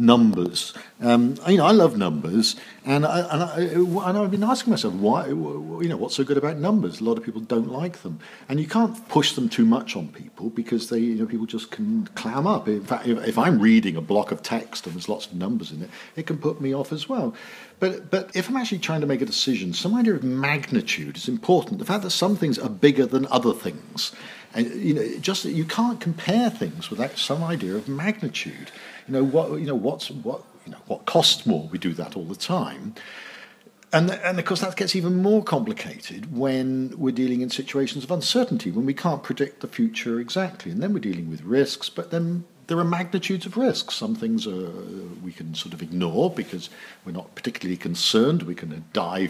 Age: 50-69